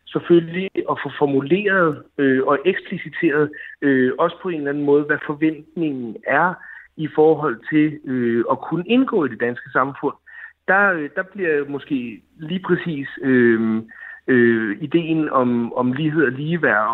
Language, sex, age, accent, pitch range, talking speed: Danish, male, 60-79, native, 130-180 Hz, 150 wpm